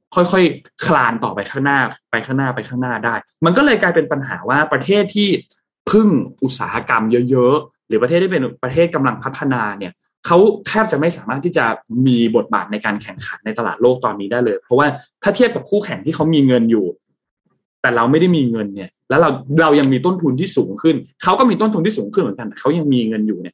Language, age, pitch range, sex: Thai, 20-39, 120-175 Hz, male